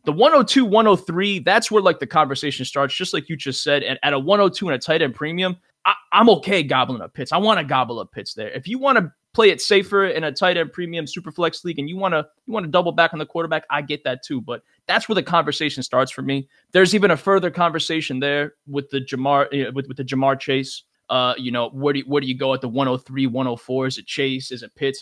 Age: 20-39